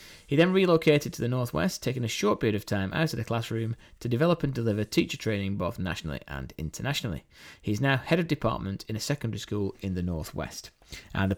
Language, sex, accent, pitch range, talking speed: English, male, British, 110-155 Hz, 210 wpm